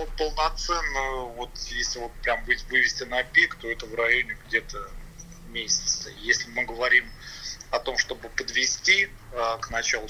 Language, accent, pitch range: Russian, native, 115-140 Hz